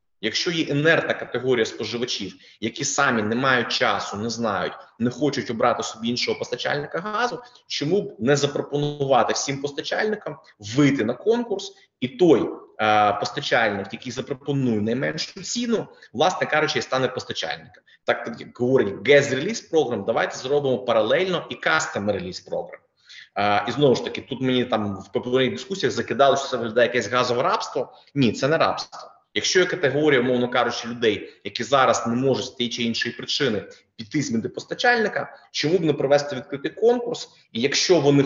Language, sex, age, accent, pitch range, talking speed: Ukrainian, male, 30-49, native, 125-175 Hz, 160 wpm